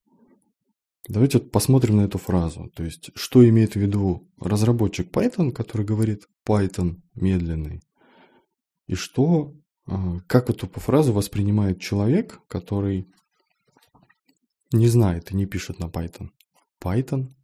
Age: 20-39